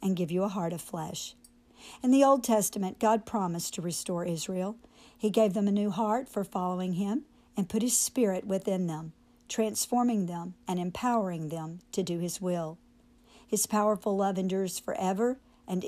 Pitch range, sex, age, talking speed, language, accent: 180-220 Hz, female, 50-69, 175 wpm, English, American